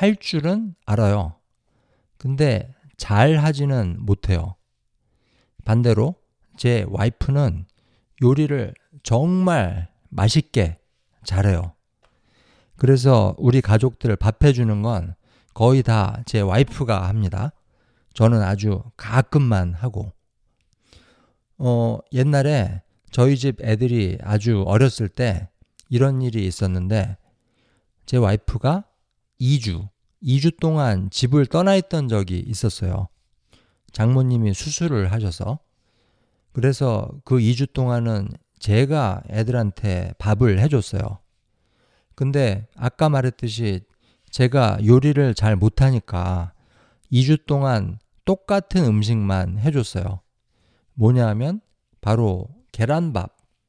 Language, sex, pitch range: Korean, male, 100-135 Hz